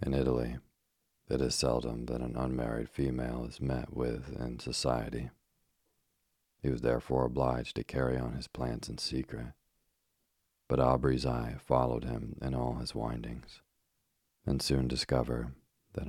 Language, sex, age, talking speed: English, male, 40-59, 140 wpm